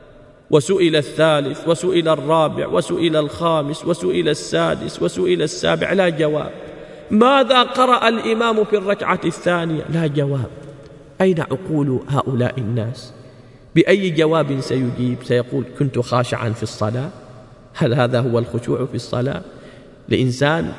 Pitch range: 130-190 Hz